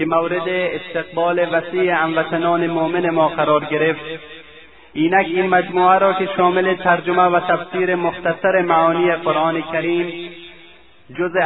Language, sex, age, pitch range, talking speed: Persian, male, 30-49, 155-175 Hz, 120 wpm